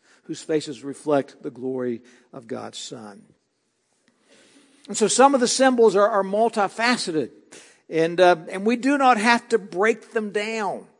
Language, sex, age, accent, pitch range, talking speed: English, male, 60-79, American, 180-240 Hz, 145 wpm